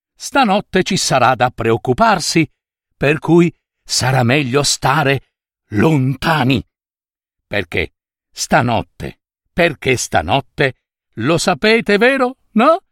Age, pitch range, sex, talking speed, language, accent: 60-79, 110-160 Hz, male, 90 wpm, Italian, native